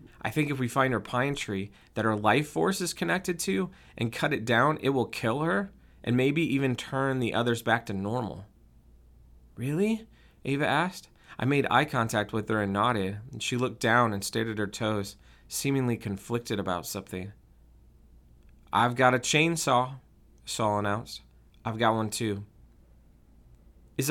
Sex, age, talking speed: male, 30-49, 165 wpm